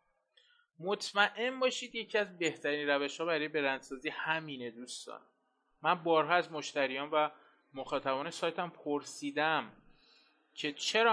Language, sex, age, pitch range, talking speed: Persian, male, 20-39, 135-165 Hz, 115 wpm